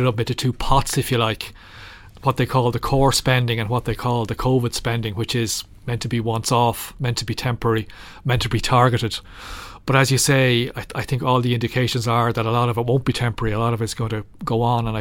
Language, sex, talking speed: English, male, 250 wpm